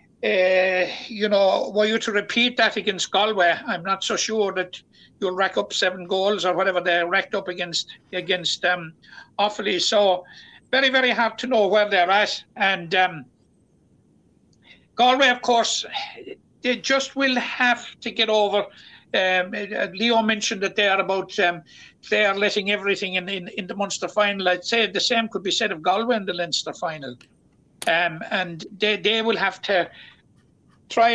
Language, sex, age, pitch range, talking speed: English, male, 60-79, 185-225 Hz, 175 wpm